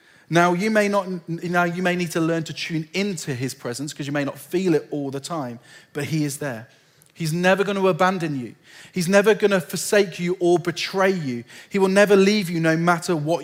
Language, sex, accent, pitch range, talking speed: English, male, British, 150-195 Hz, 230 wpm